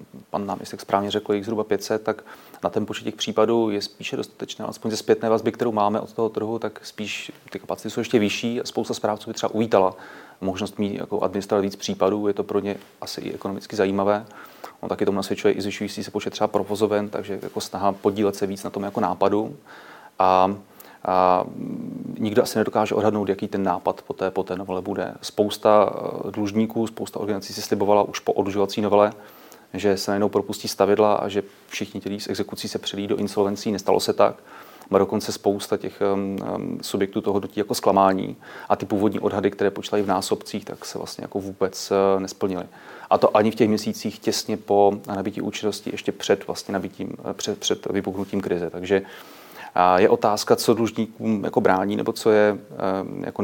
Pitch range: 100-105 Hz